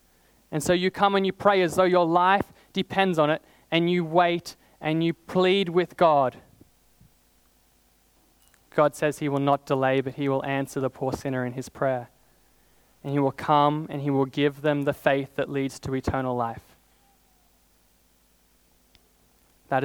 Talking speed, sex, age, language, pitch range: 165 wpm, male, 20-39, English, 125-155 Hz